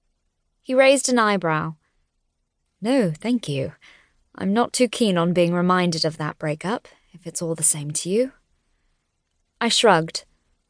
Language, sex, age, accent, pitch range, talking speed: English, female, 20-39, British, 175-240 Hz, 145 wpm